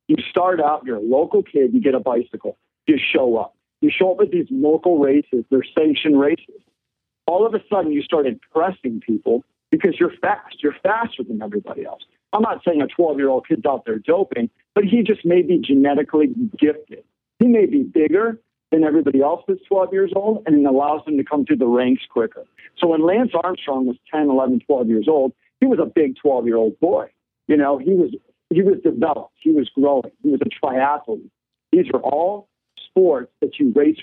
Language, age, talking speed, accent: English, 50-69, 210 wpm, American